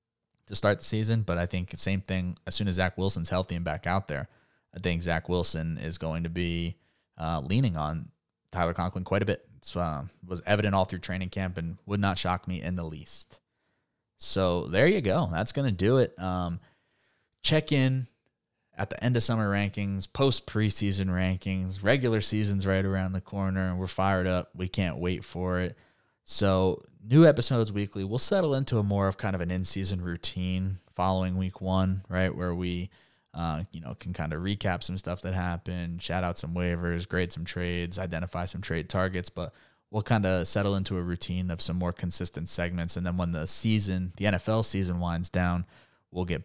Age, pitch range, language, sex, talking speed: 20-39, 85-105 Hz, English, male, 200 wpm